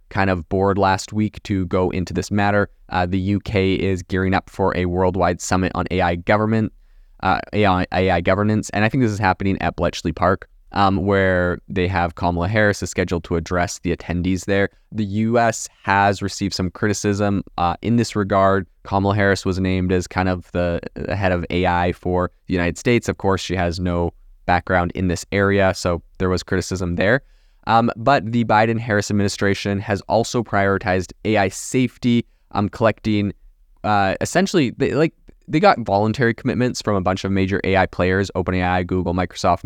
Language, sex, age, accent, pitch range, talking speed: English, male, 20-39, American, 90-105 Hz, 175 wpm